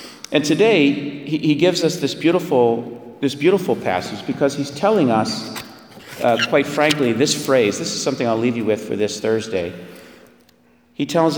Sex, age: male, 40-59